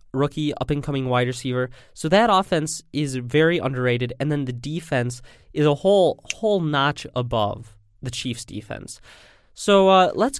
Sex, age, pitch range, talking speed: male, 20-39, 125-160 Hz, 150 wpm